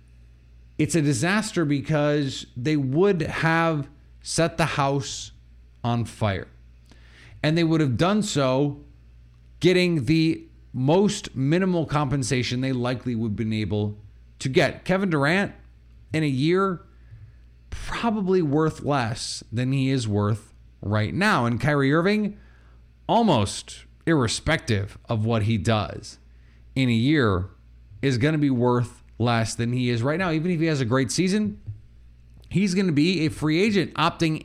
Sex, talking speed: male, 145 wpm